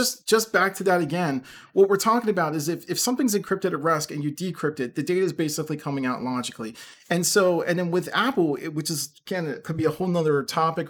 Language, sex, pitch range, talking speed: English, male, 145-185 Hz, 235 wpm